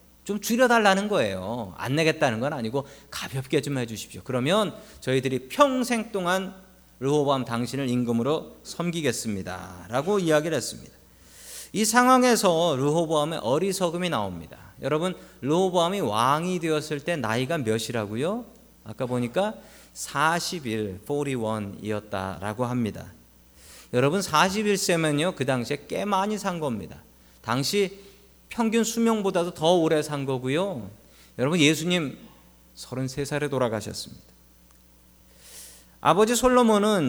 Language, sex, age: Korean, male, 40-59